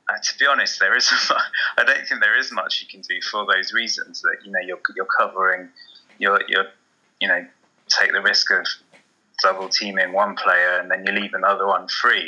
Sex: male